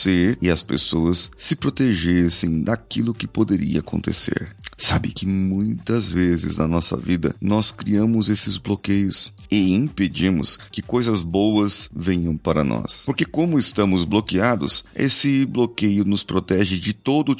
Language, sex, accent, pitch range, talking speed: Portuguese, male, Brazilian, 95-125 Hz, 135 wpm